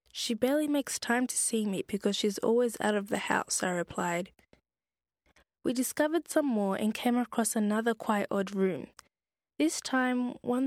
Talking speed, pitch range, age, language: 170 wpm, 195-245 Hz, 20-39, English